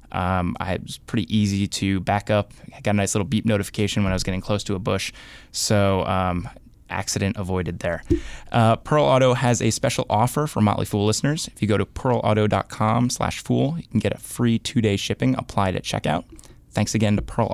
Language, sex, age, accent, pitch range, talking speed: English, male, 20-39, American, 95-115 Hz, 205 wpm